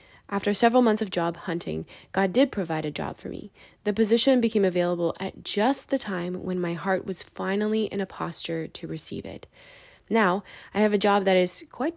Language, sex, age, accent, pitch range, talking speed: English, female, 20-39, American, 175-220 Hz, 200 wpm